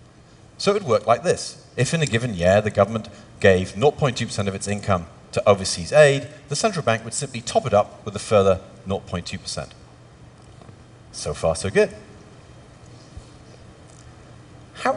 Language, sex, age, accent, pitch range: Chinese, male, 40-59, British, 100-145 Hz